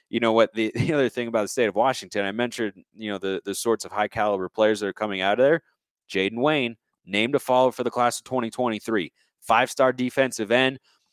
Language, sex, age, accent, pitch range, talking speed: English, male, 30-49, American, 100-125 Hz, 245 wpm